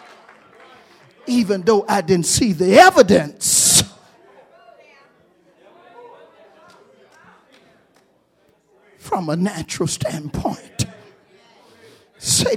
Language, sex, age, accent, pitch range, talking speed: English, male, 50-69, American, 195-260 Hz, 55 wpm